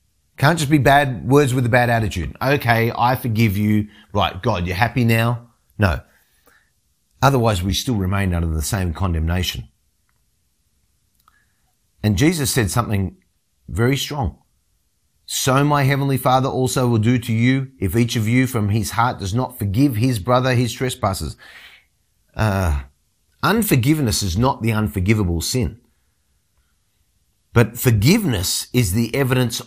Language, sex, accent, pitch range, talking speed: English, male, Australian, 100-130 Hz, 140 wpm